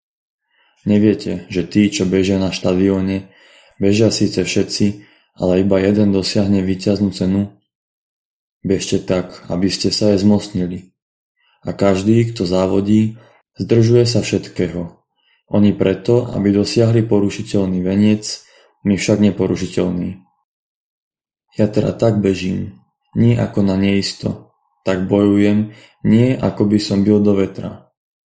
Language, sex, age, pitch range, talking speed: Slovak, male, 20-39, 95-105 Hz, 120 wpm